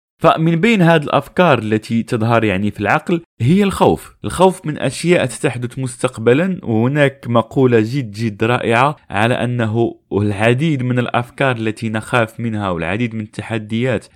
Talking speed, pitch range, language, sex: 135 wpm, 115-155 Hz, Arabic, male